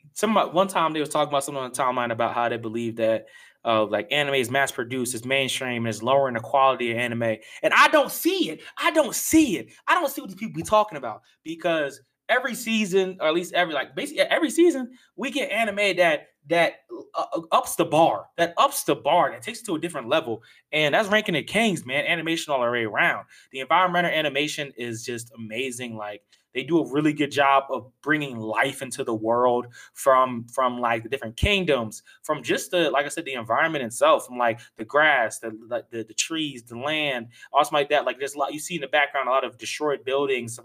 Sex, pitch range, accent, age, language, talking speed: male, 120-170 Hz, American, 20-39, English, 225 wpm